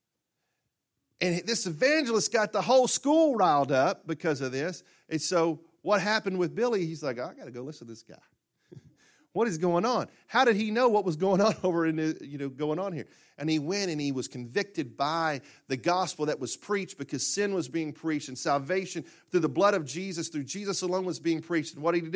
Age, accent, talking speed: 40-59, American, 225 wpm